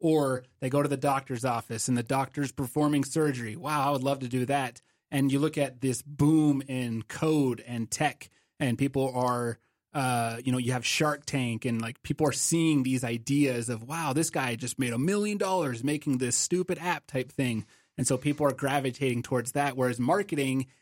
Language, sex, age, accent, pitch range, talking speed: English, male, 30-49, American, 125-150 Hz, 200 wpm